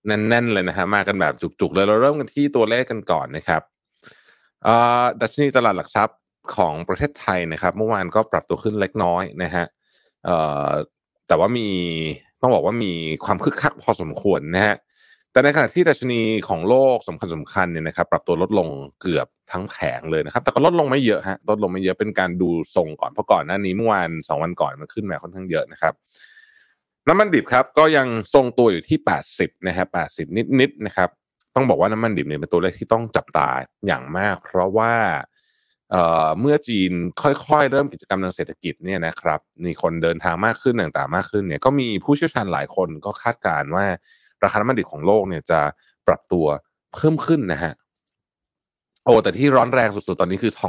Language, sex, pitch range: Thai, male, 90-125 Hz